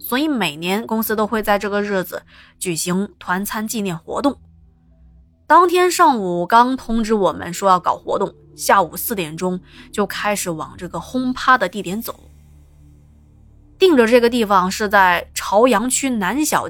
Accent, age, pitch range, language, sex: native, 20-39, 180-245 Hz, Chinese, female